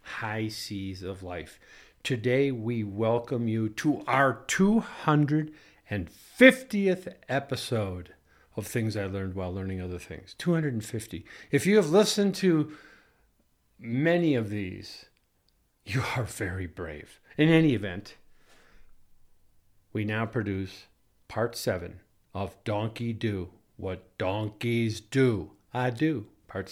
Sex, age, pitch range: male, 50-69, 105-145 Hz